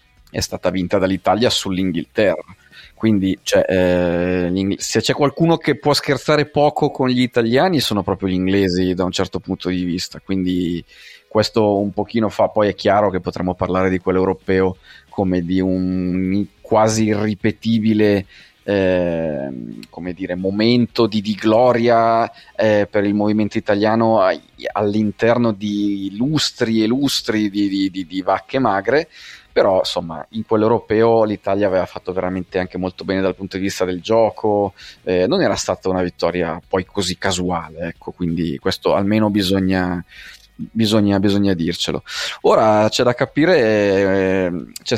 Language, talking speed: Italian, 140 wpm